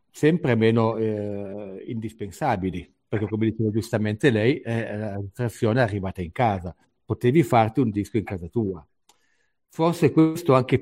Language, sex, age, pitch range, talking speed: Italian, male, 60-79, 105-125 Hz, 140 wpm